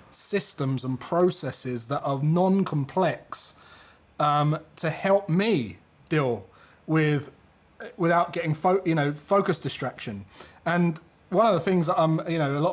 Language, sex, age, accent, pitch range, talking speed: English, male, 30-49, British, 145-175 Hz, 140 wpm